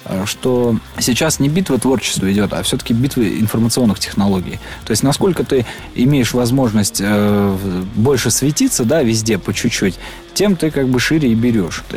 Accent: native